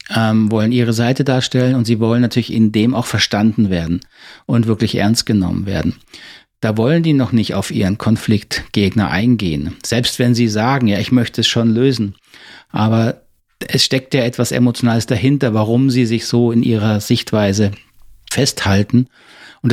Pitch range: 110-130 Hz